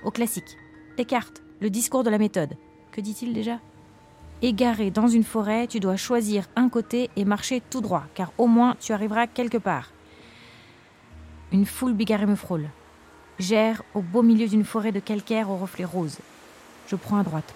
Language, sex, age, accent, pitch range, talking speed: French, female, 30-49, French, 180-225 Hz, 180 wpm